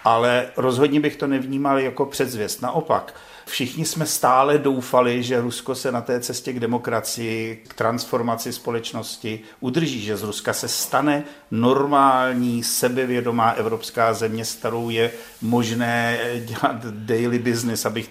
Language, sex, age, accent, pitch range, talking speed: Czech, male, 50-69, native, 115-130 Hz, 135 wpm